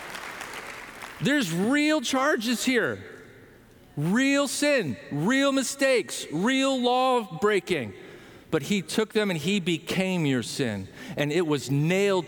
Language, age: English, 50-69